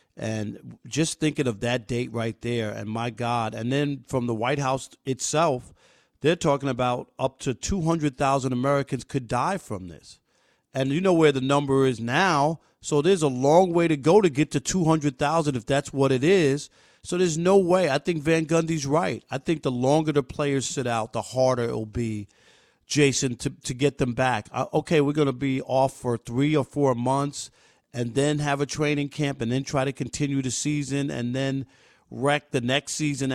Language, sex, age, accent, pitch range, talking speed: English, male, 40-59, American, 125-150 Hz, 200 wpm